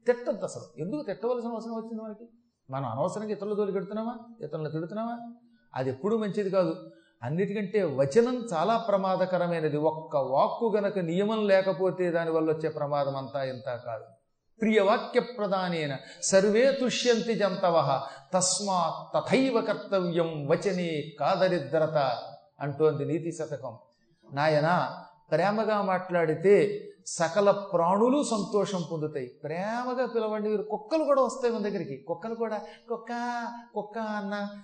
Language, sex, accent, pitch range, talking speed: Telugu, male, native, 160-230 Hz, 105 wpm